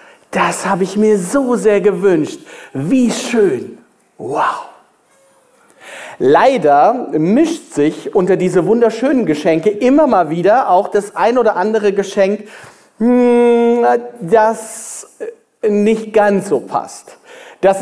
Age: 40-59